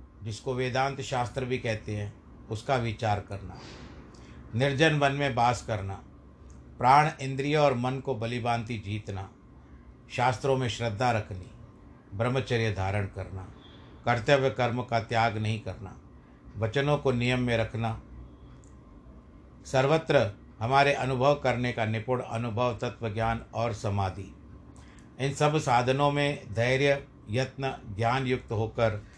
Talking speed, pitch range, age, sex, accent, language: 120 wpm, 105-130 Hz, 50-69, male, native, Hindi